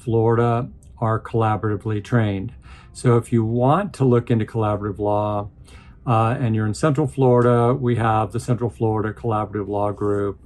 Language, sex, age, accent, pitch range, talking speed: English, male, 50-69, American, 105-125 Hz, 155 wpm